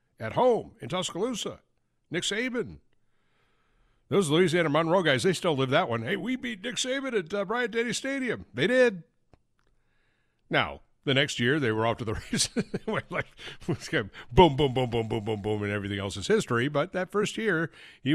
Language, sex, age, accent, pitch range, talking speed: English, male, 60-79, American, 105-165 Hz, 185 wpm